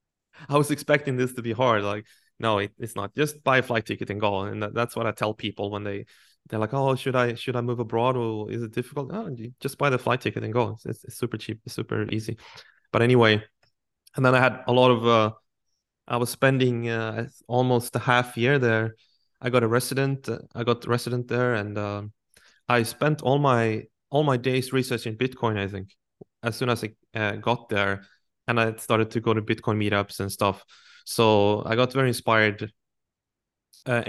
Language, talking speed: English, 210 wpm